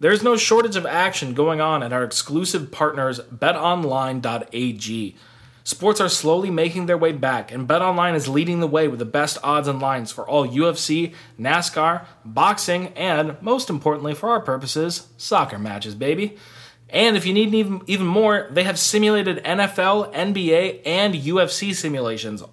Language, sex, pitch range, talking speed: English, male, 130-175 Hz, 160 wpm